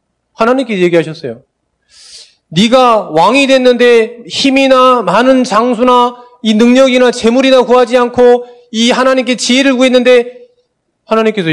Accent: native